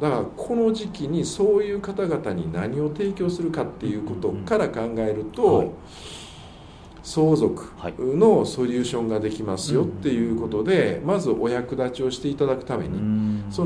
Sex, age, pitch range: male, 50-69, 105-175 Hz